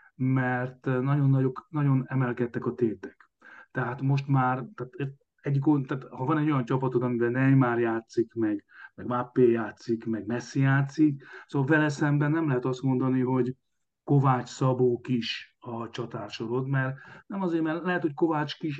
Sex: male